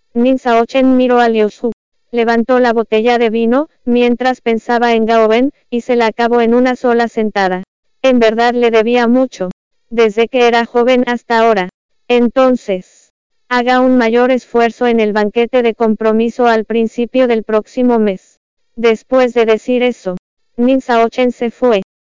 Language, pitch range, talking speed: English, 225-245 Hz, 160 wpm